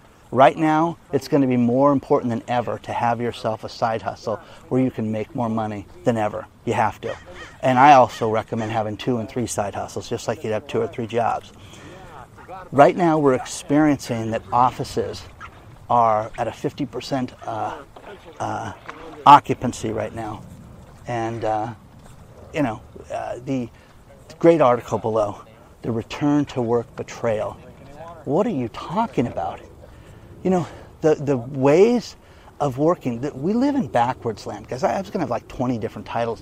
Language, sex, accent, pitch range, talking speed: English, male, American, 115-160 Hz, 165 wpm